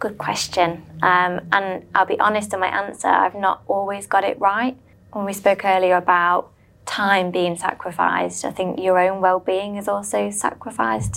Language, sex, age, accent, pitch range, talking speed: English, female, 20-39, British, 175-200 Hz, 170 wpm